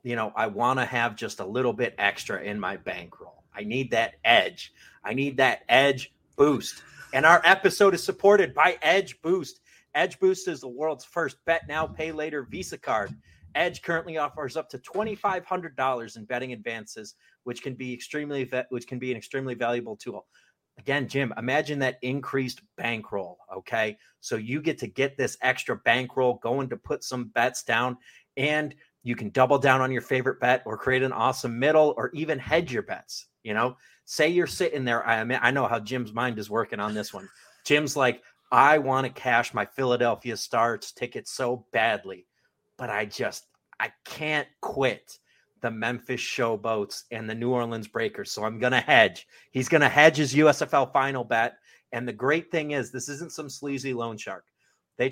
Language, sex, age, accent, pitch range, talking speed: English, male, 30-49, American, 120-150 Hz, 185 wpm